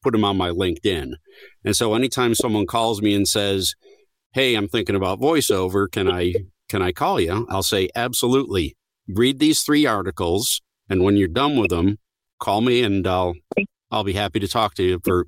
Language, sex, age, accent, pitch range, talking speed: English, male, 50-69, American, 90-115 Hz, 195 wpm